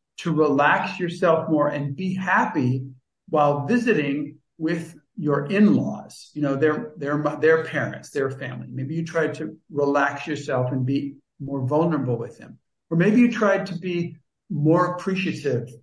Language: English